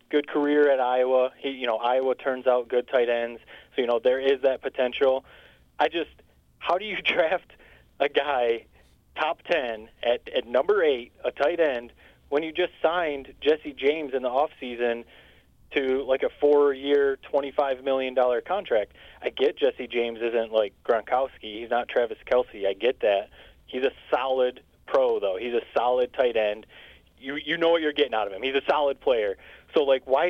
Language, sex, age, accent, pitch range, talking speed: English, male, 30-49, American, 125-180 Hz, 185 wpm